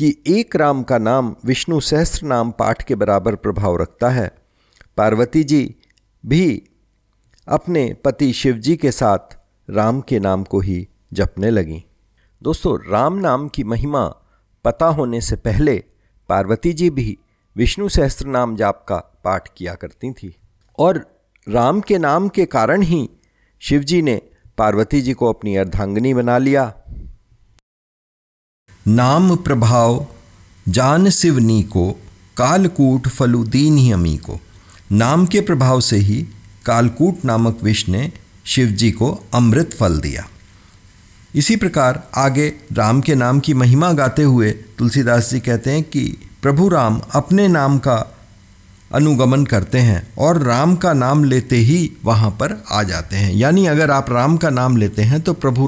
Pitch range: 100-140 Hz